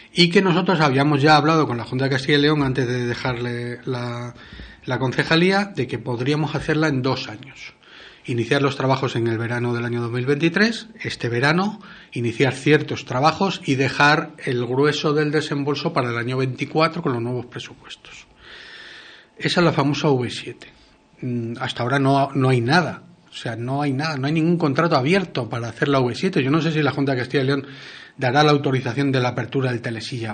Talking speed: 190 wpm